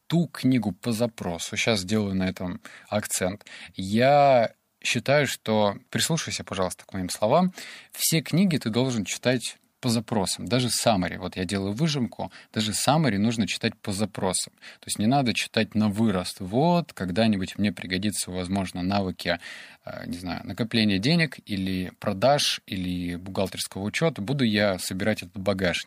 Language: Russian